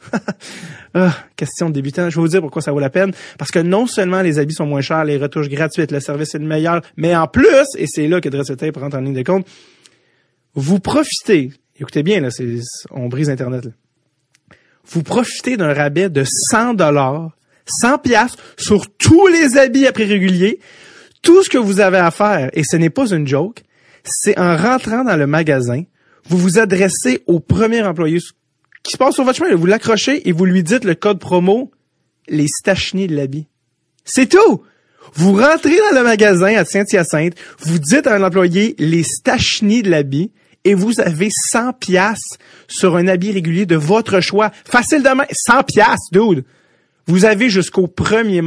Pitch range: 150-210 Hz